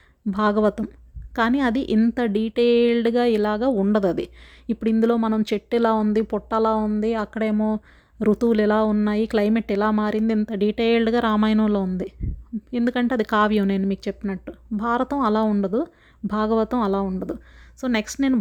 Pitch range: 205-240 Hz